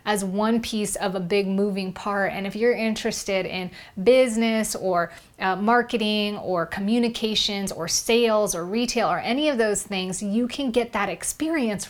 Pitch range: 185-210 Hz